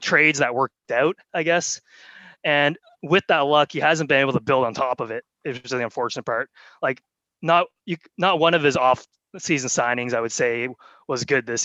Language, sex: English, male